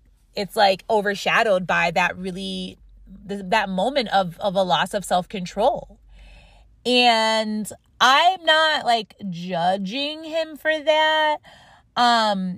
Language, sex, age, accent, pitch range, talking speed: English, female, 20-39, American, 170-225 Hz, 110 wpm